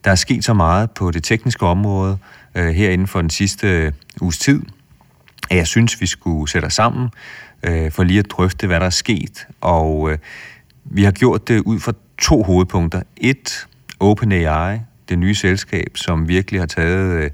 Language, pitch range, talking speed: Danish, 85-100 Hz, 175 wpm